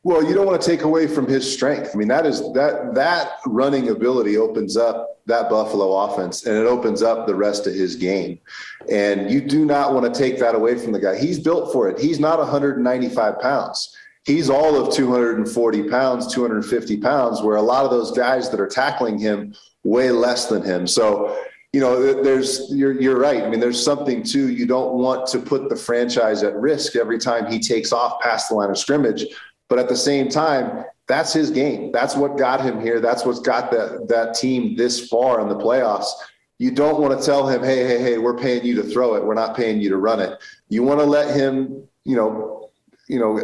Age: 30-49